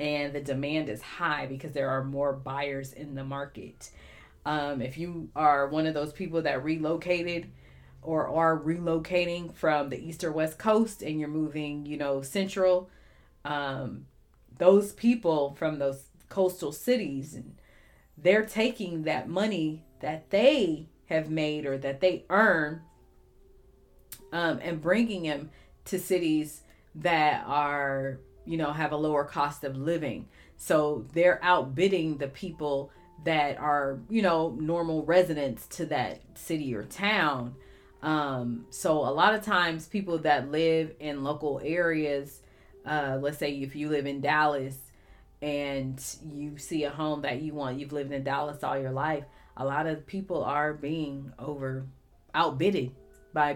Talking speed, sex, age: 150 wpm, female, 30-49